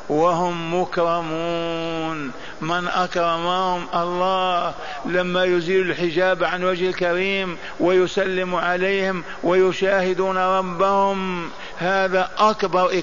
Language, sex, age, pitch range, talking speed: Arabic, male, 50-69, 175-185 Hz, 80 wpm